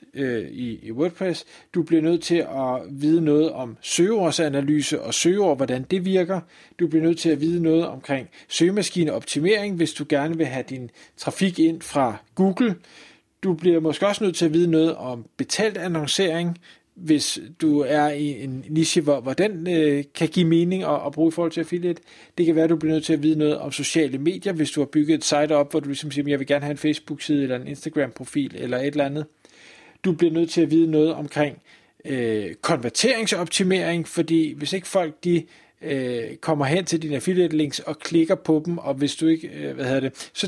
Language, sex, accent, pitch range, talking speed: Danish, male, native, 145-175 Hz, 200 wpm